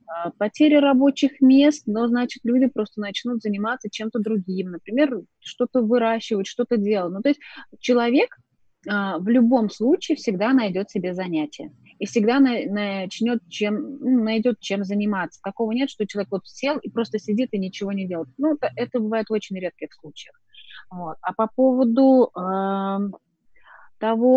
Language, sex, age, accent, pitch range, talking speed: Russian, female, 20-39, native, 210-255 Hz, 140 wpm